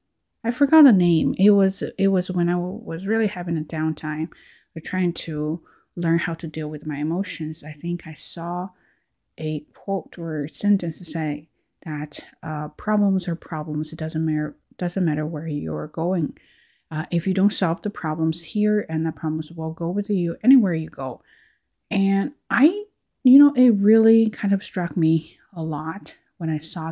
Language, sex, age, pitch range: Chinese, female, 20-39, 160-205 Hz